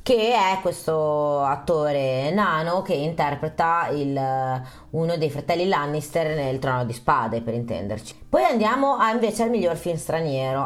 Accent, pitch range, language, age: native, 145-195 Hz, Italian, 30-49